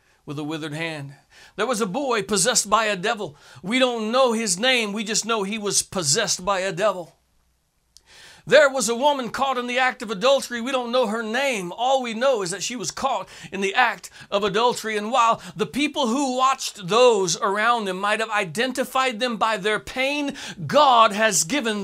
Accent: American